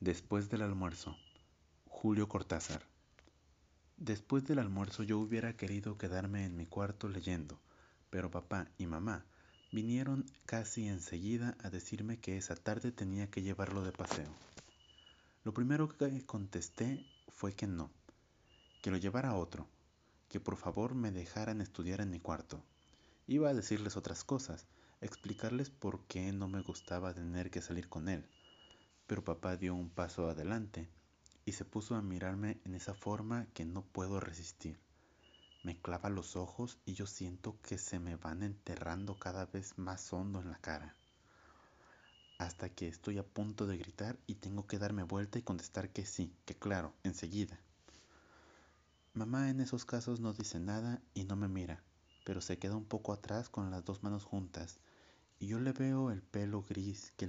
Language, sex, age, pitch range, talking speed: Spanish, male, 30-49, 85-105 Hz, 160 wpm